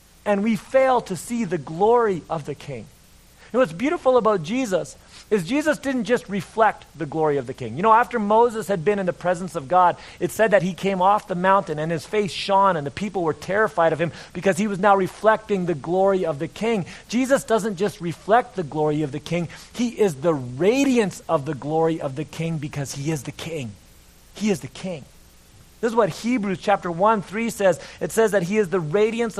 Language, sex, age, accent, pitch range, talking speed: English, male, 30-49, American, 150-205 Hz, 220 wpm